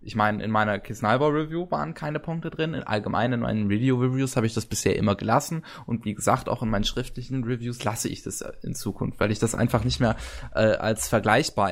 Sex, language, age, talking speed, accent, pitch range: male, German, 20-39, 210 wpm, German, 105-130 Hz